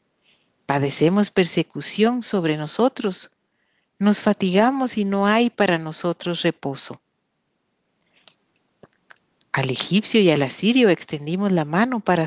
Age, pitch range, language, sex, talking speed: 50-69, 165-220 Hz, Spanish, female, 105 wpm